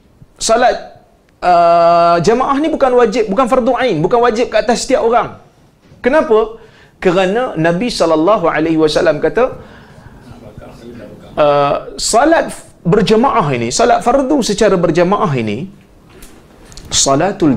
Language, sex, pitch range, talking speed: Malay, male, 165-235 Hz, 100 wpm